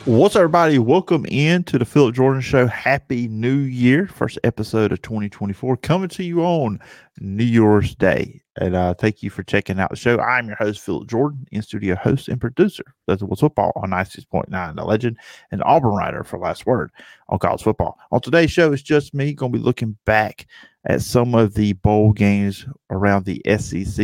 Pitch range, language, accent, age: 100-125 Hz, English, American, 40-59